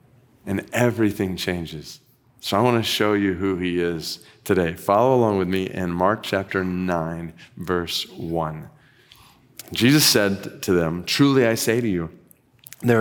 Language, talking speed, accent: English, 150 wpm, American